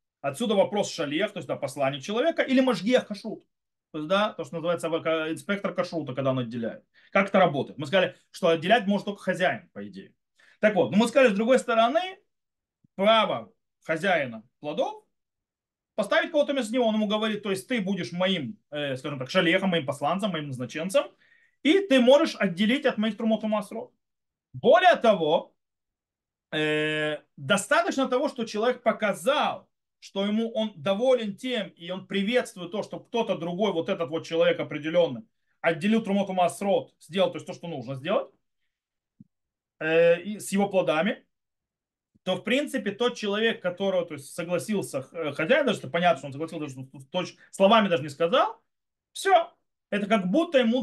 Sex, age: male, 30-49